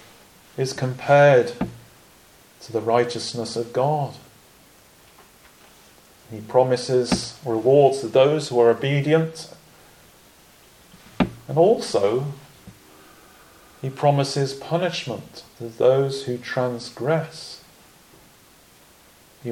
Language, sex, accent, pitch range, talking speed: English, male, British, 115-140 Hz, 75 wpm